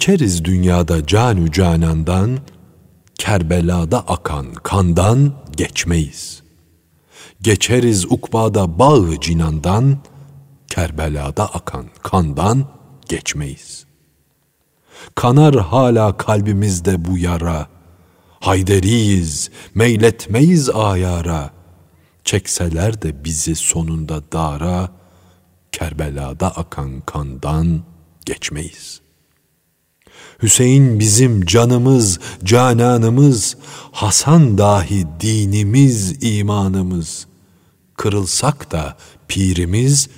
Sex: male